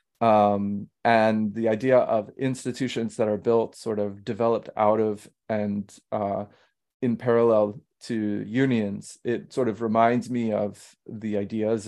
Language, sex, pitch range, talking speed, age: English, male, 105-125 Hz, 140 wpm, 30-49